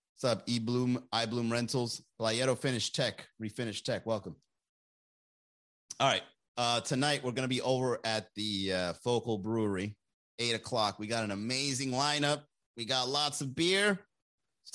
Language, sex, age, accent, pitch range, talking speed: English, male, 30-49, American, 105-130 Hz, 150 wpm